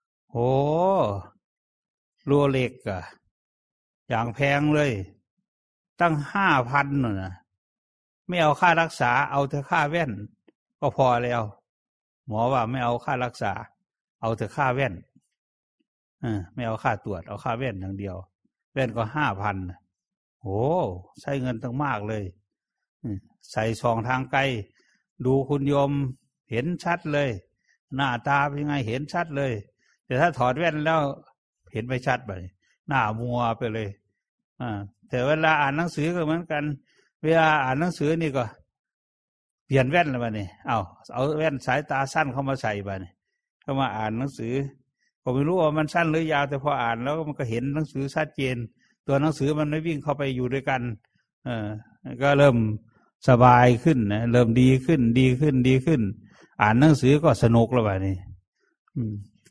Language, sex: English, male